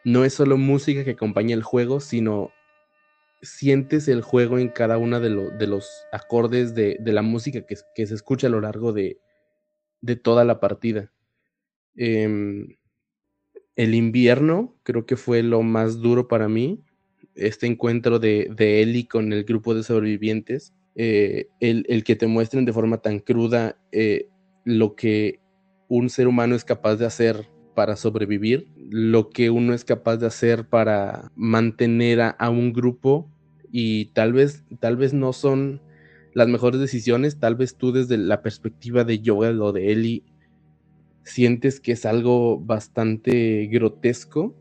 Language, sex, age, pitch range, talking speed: Spanish, male, 20-39, 110-125 Hz, 160 wpm